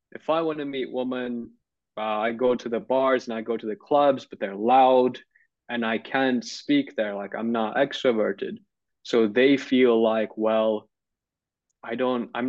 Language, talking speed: English, 185 wpm